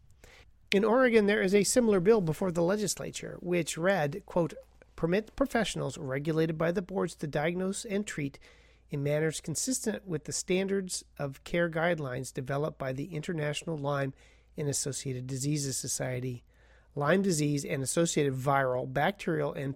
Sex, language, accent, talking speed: male, English, American, 145 wpm